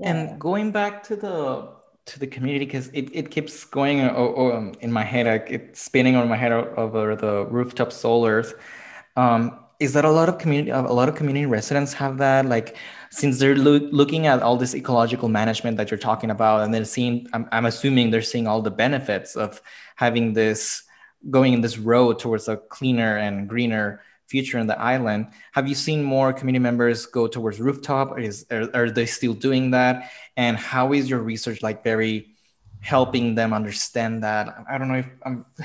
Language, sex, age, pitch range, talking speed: English, male, 20-39, 110-135 Hz, 195 wpm